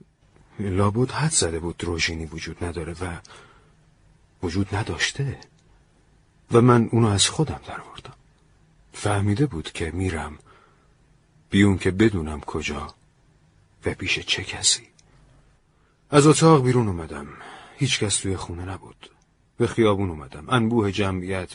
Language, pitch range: Persian, 90-120 Hz